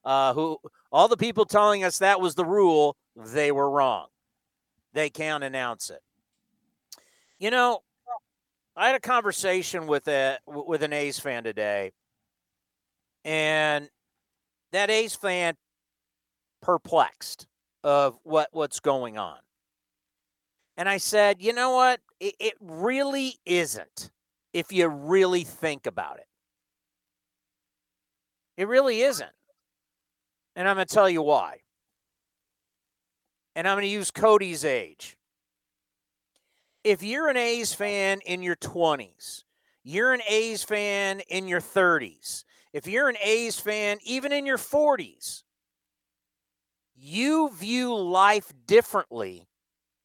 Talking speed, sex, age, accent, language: 120 wpm, male, 50-69, American, English